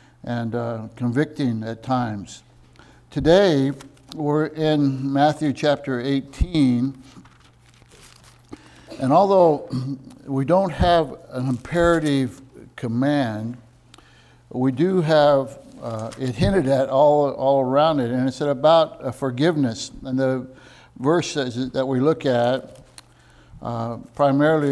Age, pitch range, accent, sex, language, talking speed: 60-79, 125-150 Hz, American, male, English, 105 wpm